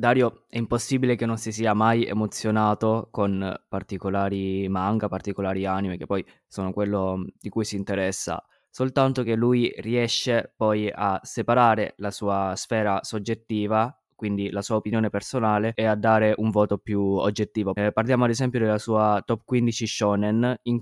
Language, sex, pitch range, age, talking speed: Italian, male, 105-120 Hz, 20-39, 160 wpm